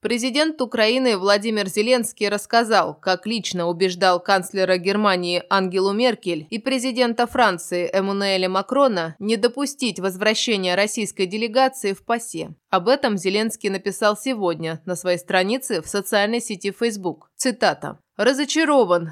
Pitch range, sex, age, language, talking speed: 180-225 Hz, female, 20-39, Russian, 120 wpm